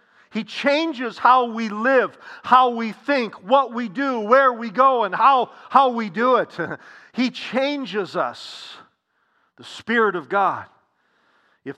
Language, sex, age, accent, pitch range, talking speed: English, male, 50-69, American, 180-235 Hz, 145 wpm